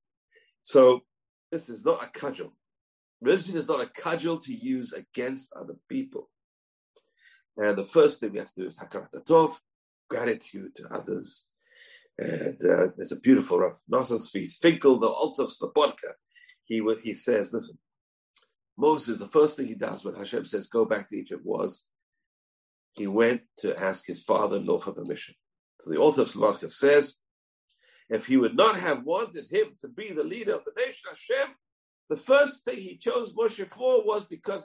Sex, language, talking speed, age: male, English, 170 wpm, 50-69